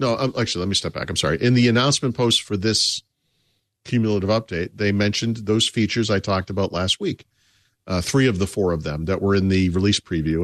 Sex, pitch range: male, 90-110 Hz